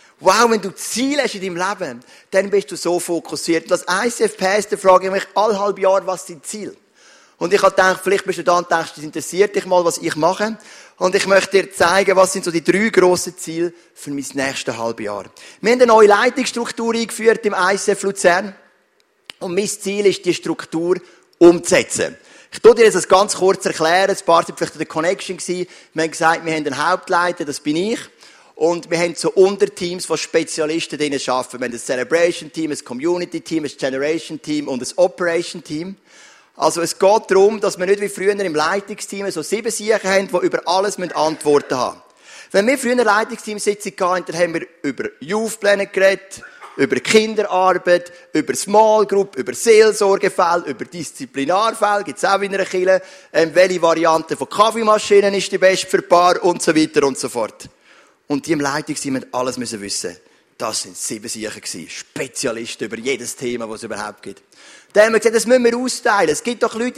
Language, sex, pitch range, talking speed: German, male, 165-205 Hz, 195 wpm